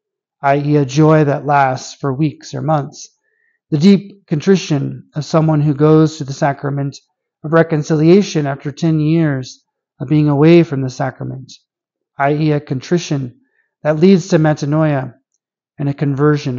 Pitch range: 140-165 Hz